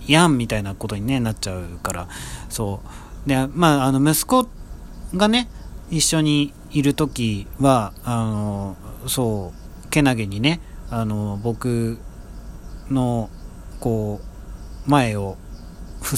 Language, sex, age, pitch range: Japanese, male, 40-59, 100-135 Hz